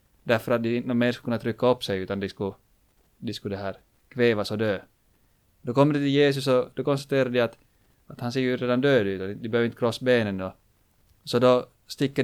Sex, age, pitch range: male, 20-39, 105-125 Hz